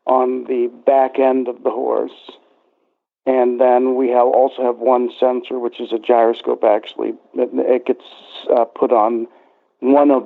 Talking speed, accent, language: 150 wpm, American, English